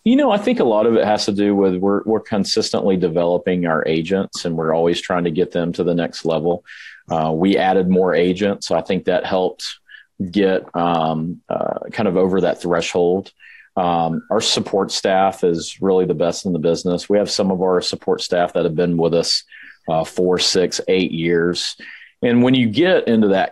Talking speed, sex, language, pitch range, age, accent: 205 wpm, male, English, 85-105 Hz, 40-59, American